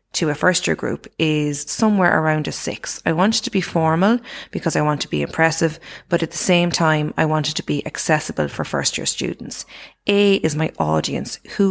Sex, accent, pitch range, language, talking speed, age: female, Irish, 150-180 Hz, English, 215 wpm, 20-39